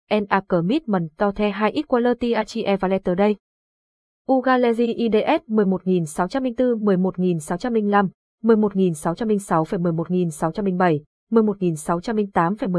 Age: 20-39